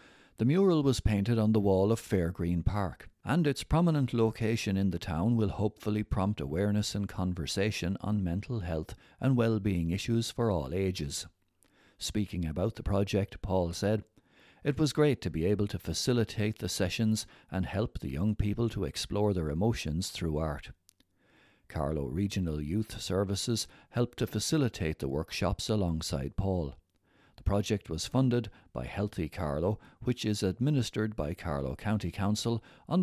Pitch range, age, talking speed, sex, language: 90-110 Hz, 60-79, 155 wpm, male, English